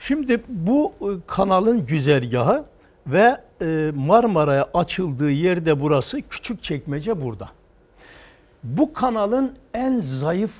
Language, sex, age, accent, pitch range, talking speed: Turkish, male, 60-79, native, 145-230 Hz, 90 wpm